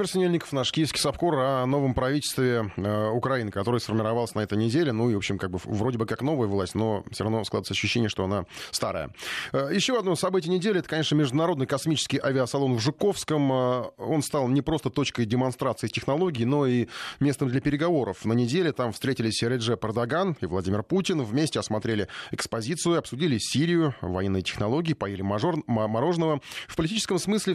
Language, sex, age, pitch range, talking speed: Russian, male, 30-49, 110-150 Hz, 170 wpm